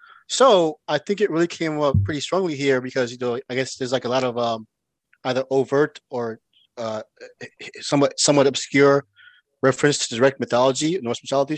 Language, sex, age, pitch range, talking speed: English, male, 20-39, 120-145 Hz, 175 wpm